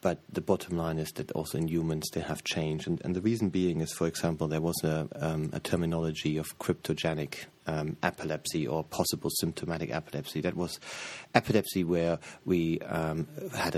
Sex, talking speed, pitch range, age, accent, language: male, 180 wpm, 80-90 Hz, 30-49, German, English